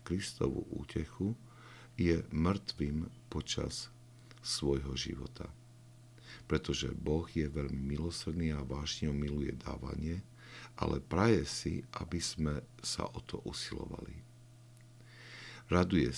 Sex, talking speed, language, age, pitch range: male, 95 wpm, Slovak, 50-69, 70-120 Hz